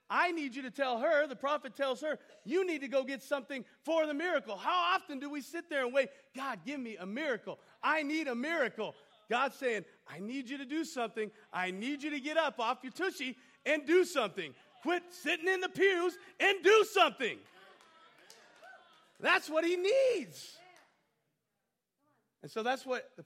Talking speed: 190 wpm